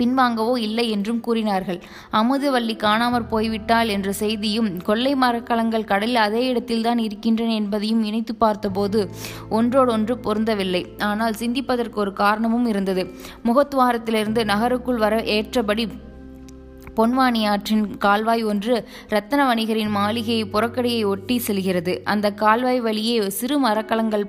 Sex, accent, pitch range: female, native, 210-235 Hz